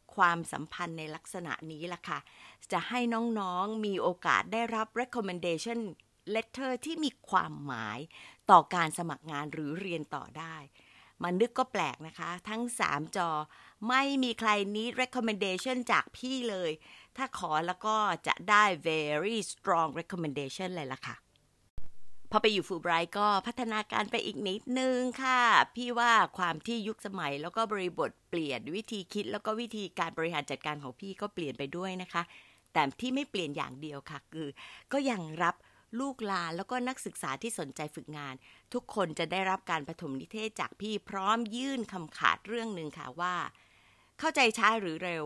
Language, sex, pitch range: Thai, female, 160-225 Hz